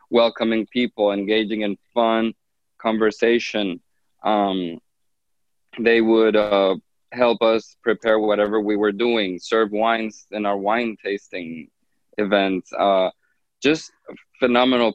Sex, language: male, English